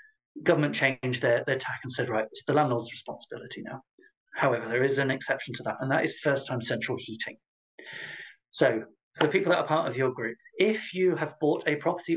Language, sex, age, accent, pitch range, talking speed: English, male, 30-49, British, 130-175 Hz, 205 wpm